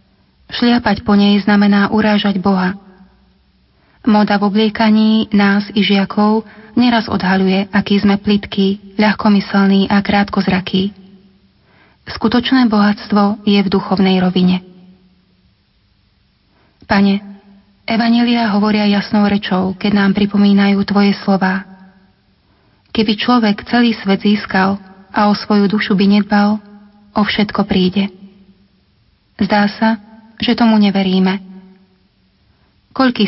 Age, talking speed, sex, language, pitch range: 30-49, 100 wpm, female, Slovak, 195-215 Hz